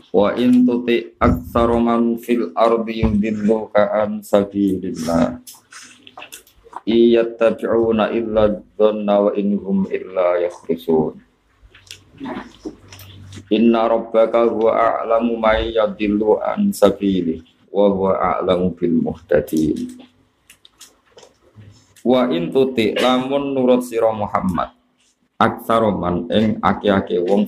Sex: male